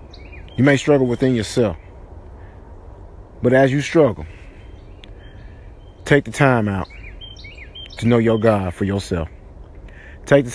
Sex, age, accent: male, 40-59, American